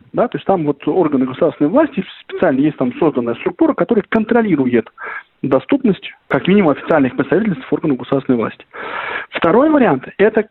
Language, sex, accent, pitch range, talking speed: Russian, male, native, 140-205 Hz, 135 wpm